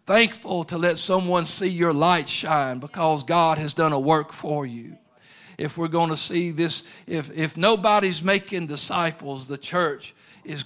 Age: 50-69